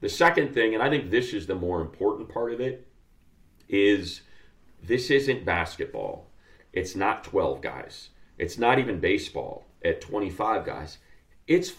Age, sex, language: 40-59, male, English